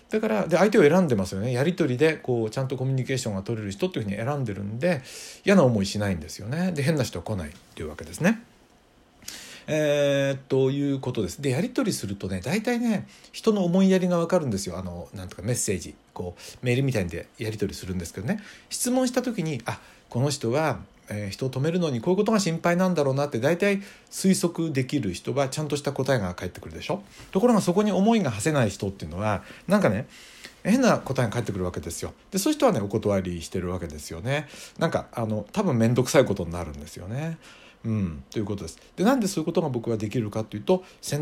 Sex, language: male, Japanese